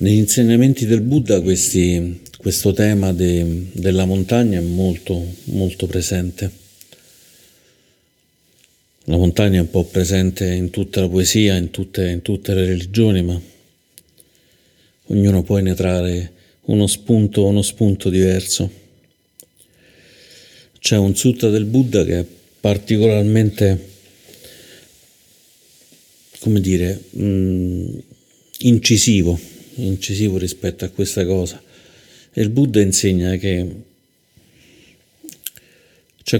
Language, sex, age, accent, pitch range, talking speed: Italian, male, 50-69, native, 90-105 Hz, 100 wpm